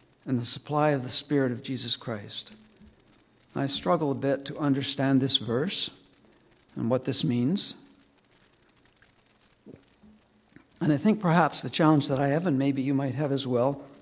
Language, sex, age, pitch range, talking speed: English, male, 60-79, 130-145 Hz, 160 wpm